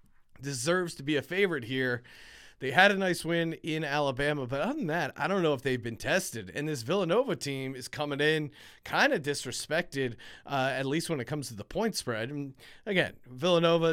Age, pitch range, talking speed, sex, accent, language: 30-49, 130-170 Hz, 205 wpm, male, American, English